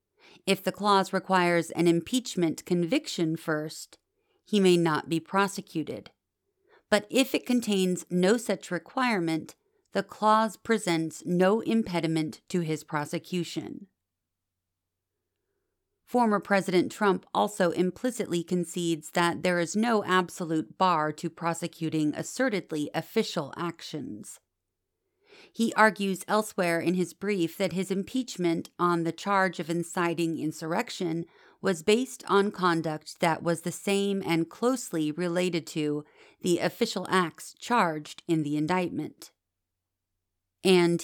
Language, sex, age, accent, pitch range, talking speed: English, female, 40-59, American, 160-200 Hz, 115 wpm